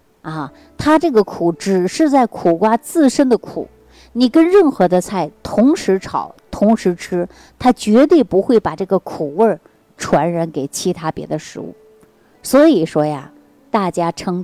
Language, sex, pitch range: Chinese, female, 155-215 Hz